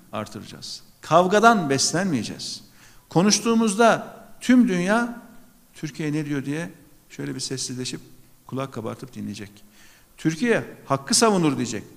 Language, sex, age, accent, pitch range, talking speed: Turkish, male, 50-69, native, 120-175 Hz, 100 wpm